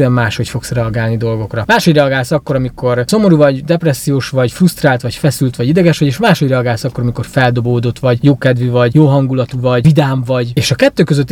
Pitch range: 125-155 Hz